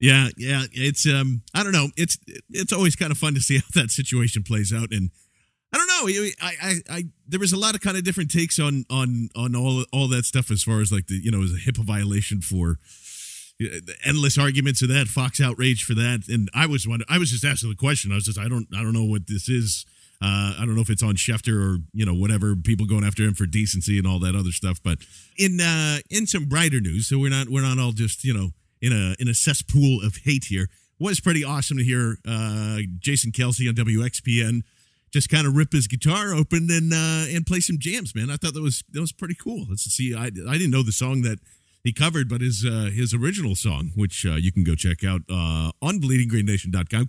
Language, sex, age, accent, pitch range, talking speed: English, male, 40-59, American, 105-150 Hz, 245 wpm